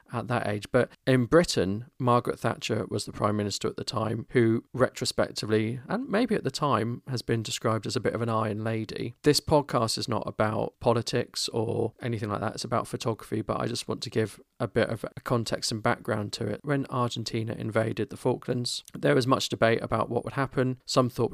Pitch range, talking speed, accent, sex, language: 115-130 Hz, 210 wpm, British, male, English